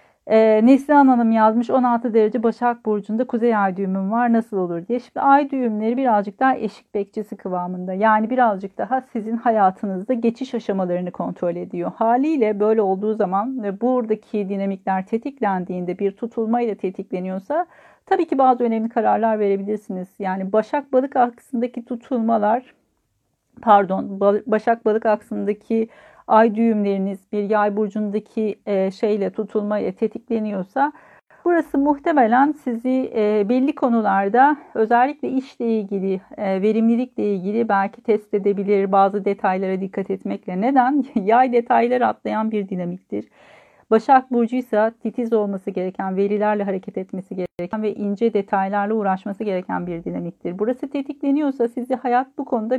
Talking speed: 125 wpm